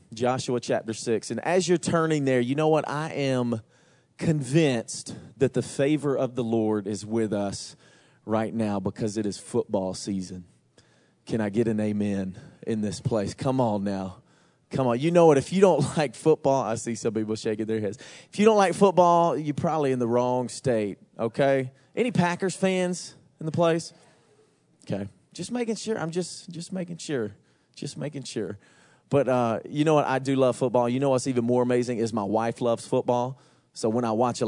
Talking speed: 195 wpm